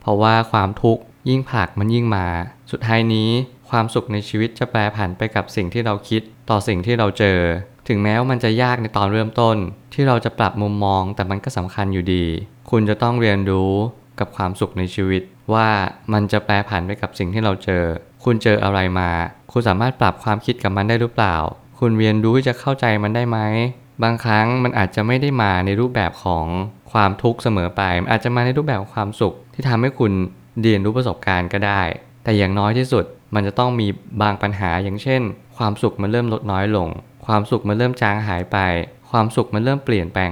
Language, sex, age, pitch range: Thai, male, 20-39, 100-120 Hz